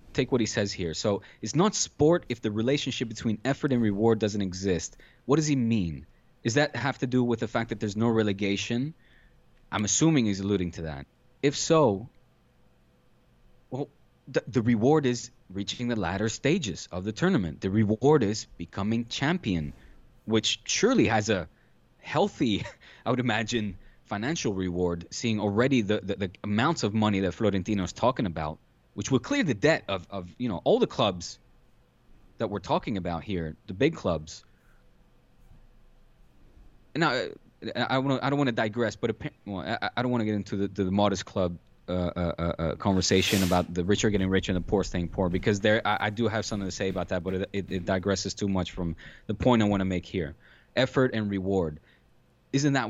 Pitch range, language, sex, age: 95-125 Hz, English, male, 20-39